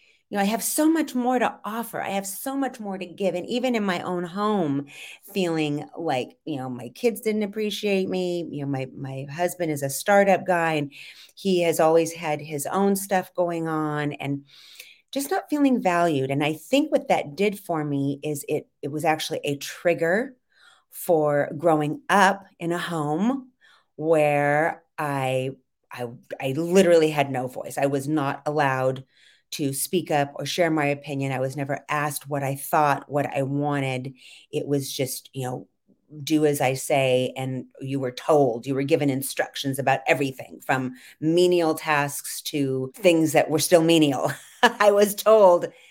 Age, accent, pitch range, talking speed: 30-49, American, 140-180 Hz, 180 wpm